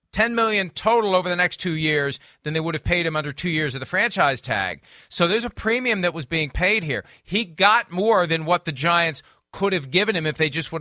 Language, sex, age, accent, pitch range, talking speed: English, male, 40-59, American, 160-215 Hz, 250 wpm